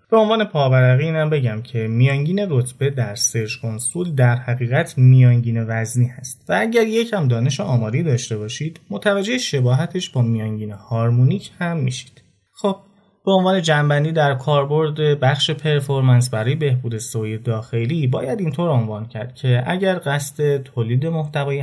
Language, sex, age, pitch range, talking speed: Persian, male, 30-49, 120-150 Hz, 140 wpm